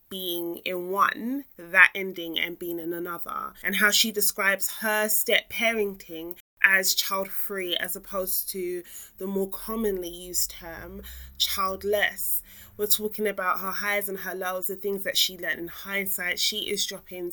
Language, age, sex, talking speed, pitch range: English, 20-39, female, 160 wpm, 180-205 Hz